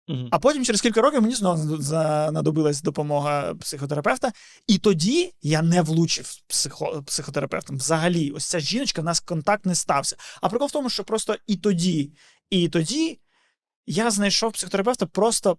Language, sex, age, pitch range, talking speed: Ukrainian, male, 20-39, 160-210 Hz, 155 wpm